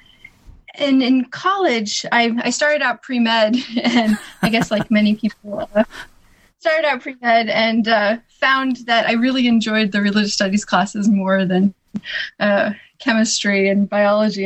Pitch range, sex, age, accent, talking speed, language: 205-240 Hz, female, 20-39, American, 160 wpm, English